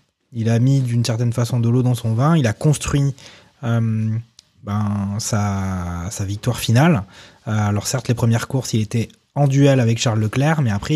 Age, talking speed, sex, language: 20-39, 190 wpm, male, French